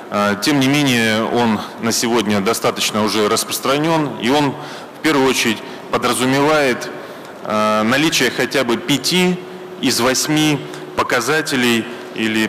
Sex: male